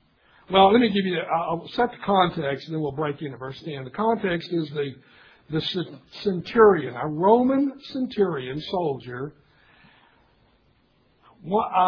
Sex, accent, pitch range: male, American, 170-230 Hz